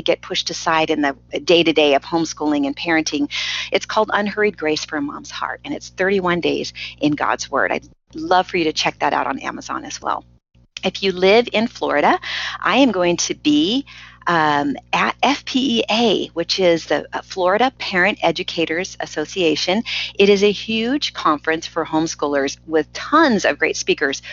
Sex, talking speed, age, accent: female, 170 wpm, 40-59, American